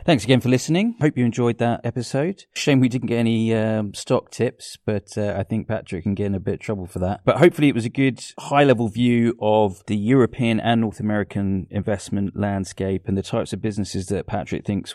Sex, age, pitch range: male, 30-49, 100-120 Hz